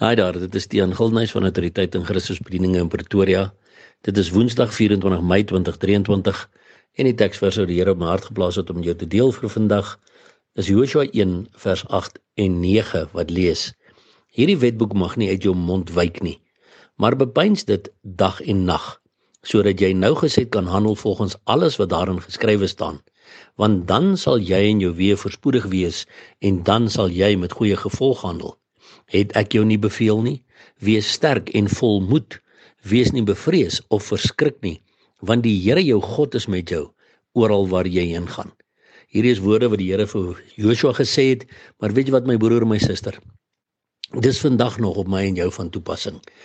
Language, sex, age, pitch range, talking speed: English, male, 60-79, 95-115 Hz, 190 wpm